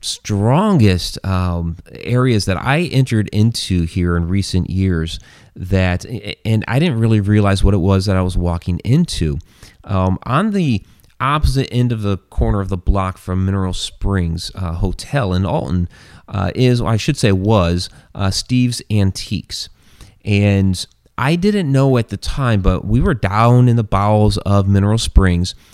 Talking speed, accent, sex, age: 160 wpm, American, male, 30-49